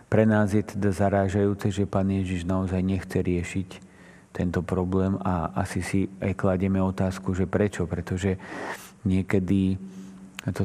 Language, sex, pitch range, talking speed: Slovak, male, 95-105 Hz, 135 wpm